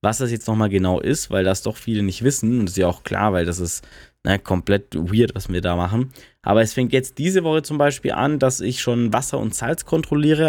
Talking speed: 250 wpm